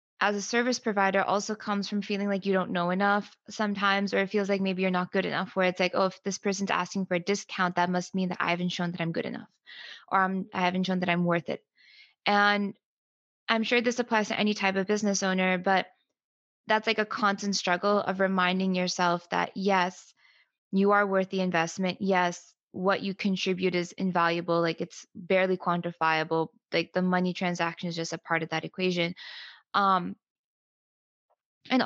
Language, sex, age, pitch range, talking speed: English, female, 20-39, 180-210 Hz, 200 wpm